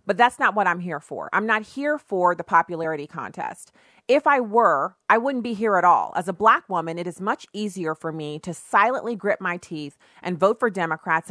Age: 40-59